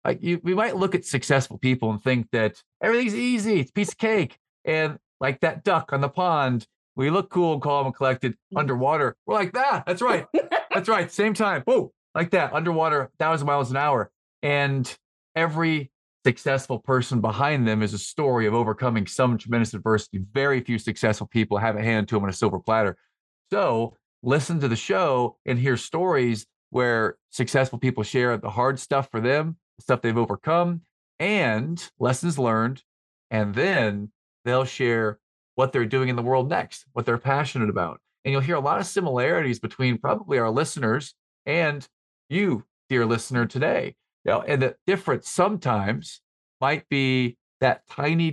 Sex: male